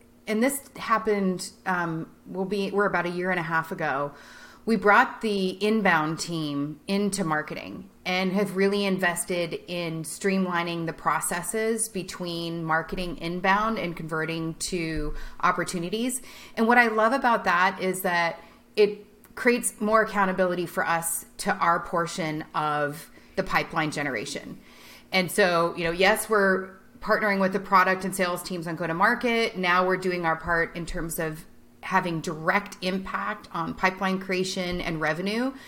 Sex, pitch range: female, 175-215 Hz